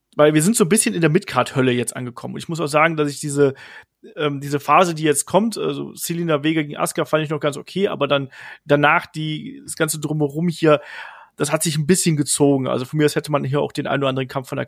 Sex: male